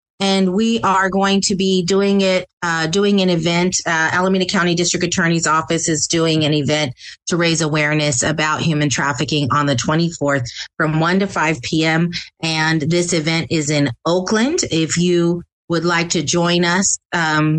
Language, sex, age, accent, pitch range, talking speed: English, female, 30-49, American, 160-195 Hz, 170 wpm